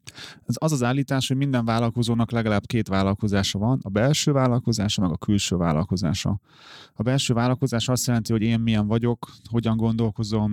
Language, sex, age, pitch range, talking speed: Hungarian, male, 30-49, 105-120 Hz, 160 wpm